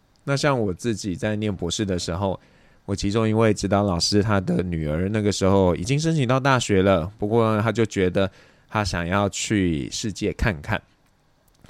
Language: Chinese